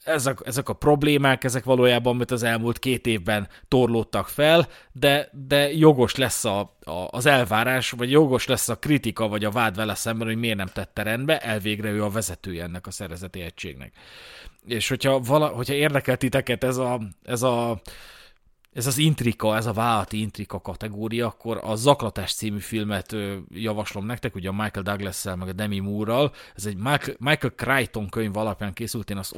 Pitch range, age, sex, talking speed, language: 110-135 Hz, 30-49, male, 175 wpm, Hungarian